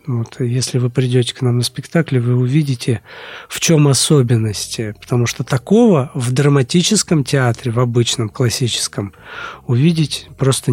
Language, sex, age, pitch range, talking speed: Russian, male, 50-69, 120-145 Hz, 135 wpm